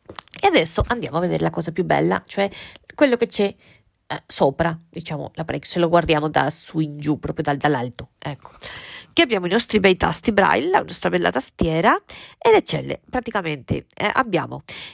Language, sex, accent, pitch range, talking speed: Italian, female, native, 160-225 Hz, 165 wpm